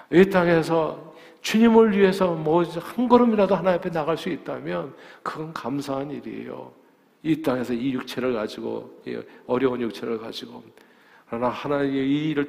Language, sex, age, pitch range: Korean, male, 40-59, 125-155 Hz